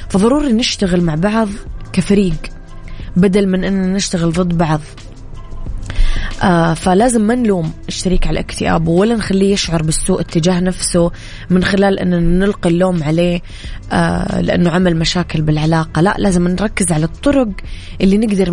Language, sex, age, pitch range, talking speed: Arabic, female, 20-39, 165-205 Hz, 130 wpm